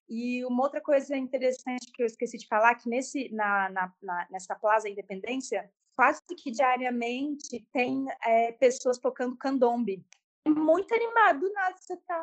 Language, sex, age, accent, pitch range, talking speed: Portuguese, female, 20-39, Brazilian, 225-285 Hz, 150 wpm